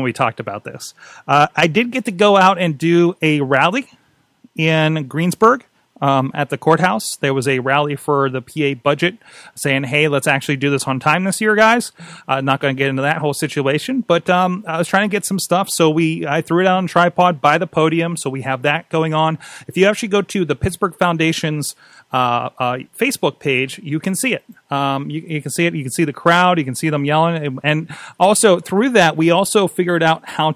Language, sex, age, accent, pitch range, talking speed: English, male, 30-49, American, 145-170 Hz, 225 wpm